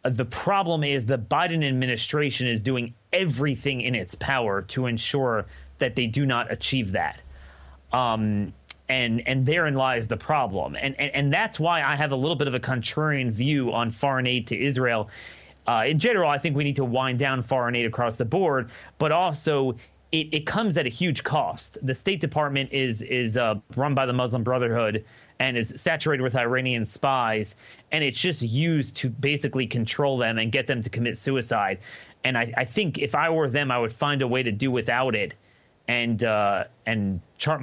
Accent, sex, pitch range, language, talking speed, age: American, male, 120-145 Hz, English, 195 wpm, 30-49